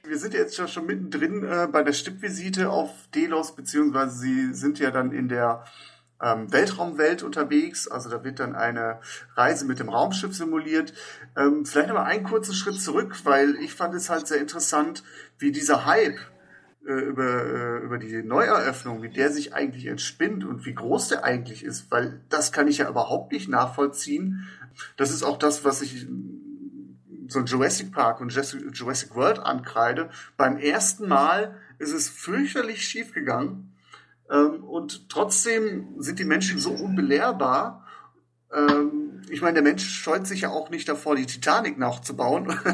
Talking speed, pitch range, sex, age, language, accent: 165 wpm, 130-175 Hz, male, 40-59, German, German